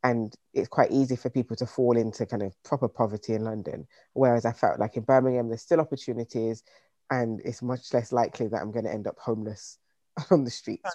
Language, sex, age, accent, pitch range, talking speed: English, female, 20-39, British, 120-140 Hz, 210 wpm